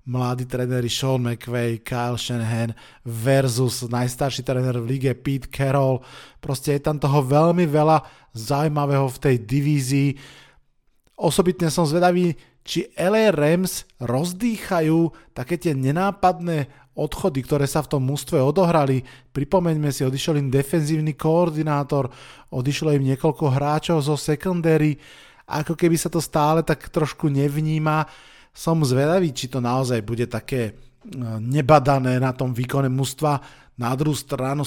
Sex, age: male, 20-39